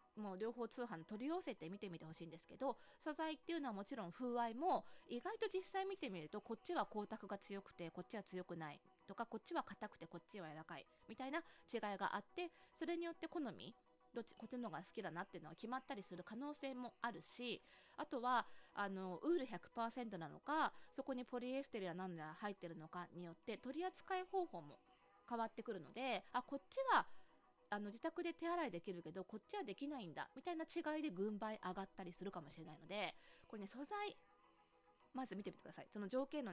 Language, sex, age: Japanese, female, 20-39